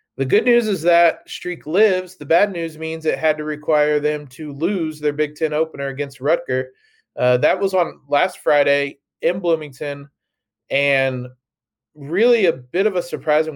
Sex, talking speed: male, 175 wpm